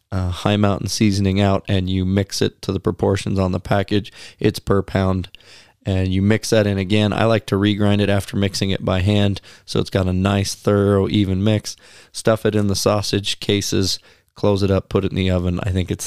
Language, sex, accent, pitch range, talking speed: English, male, American, 95-105 Hz, 220 wpm